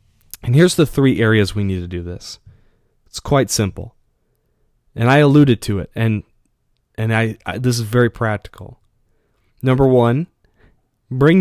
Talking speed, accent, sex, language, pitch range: 155 wpm, American, male, English, 105-150 Hz